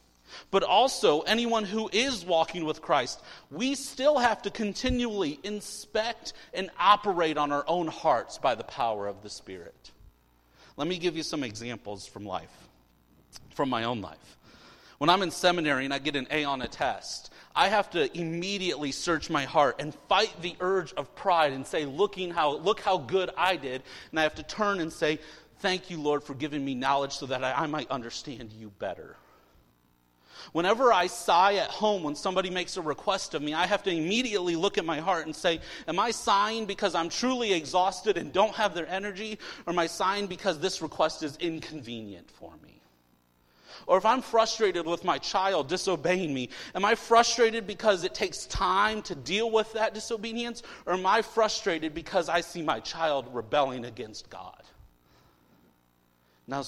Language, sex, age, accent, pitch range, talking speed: English, male, 40-59, American, 140-200 Hz, 180 wpm